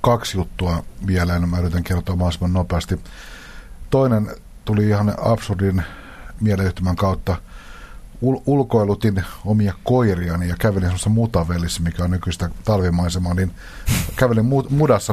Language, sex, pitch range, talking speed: Finnish, male, 85-105 Hz, 120 wpm